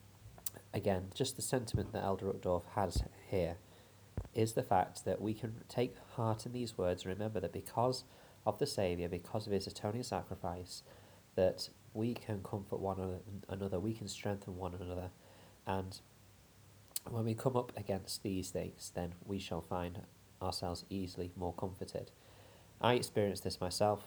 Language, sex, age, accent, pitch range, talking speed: English, male, 20-39, British, 90-105 Hz, 155 wpm